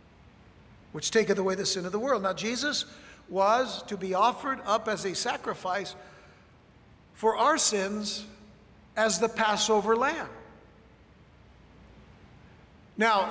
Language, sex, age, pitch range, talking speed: English, male, 60-79, 190-220 Hz, 115 wpm